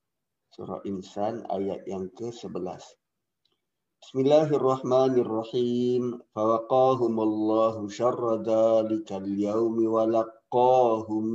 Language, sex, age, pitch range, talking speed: Malay, male, 50-69, 110-130 Hz, 70 wpm